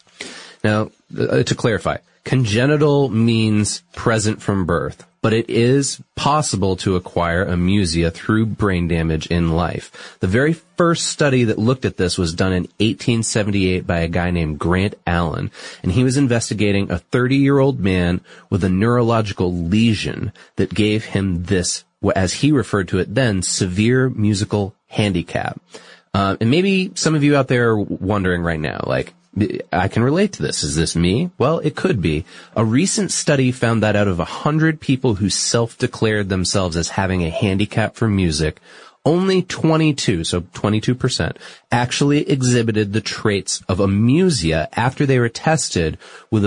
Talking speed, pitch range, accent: 160 wpm, 95-130 Hz, American